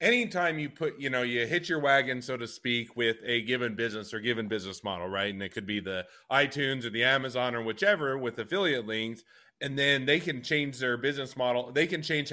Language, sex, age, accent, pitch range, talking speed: English, male, 30-49, American, 115-140 Hz, 225 wpm